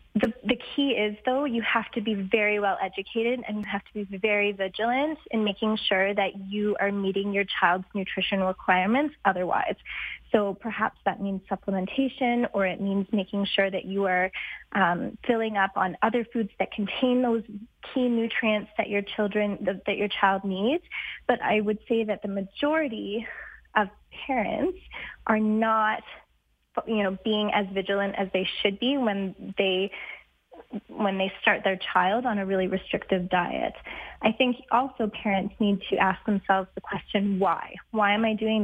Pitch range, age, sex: 195-230 Hz, 20-39, female